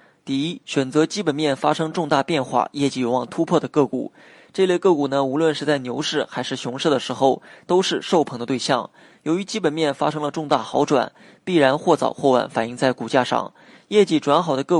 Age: 20-39